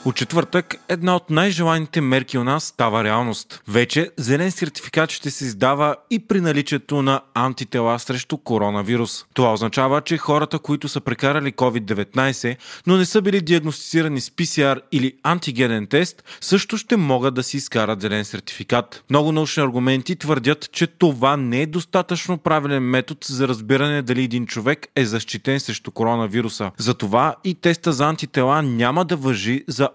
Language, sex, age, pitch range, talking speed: Bulgarian, male, 30-49, 125-155 Hz, 155 wpm